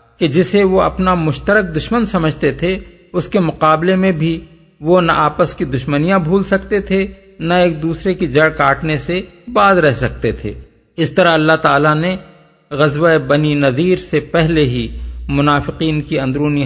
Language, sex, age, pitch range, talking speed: Urdu, male, 50-69, 135-180 Hz, 165 wpm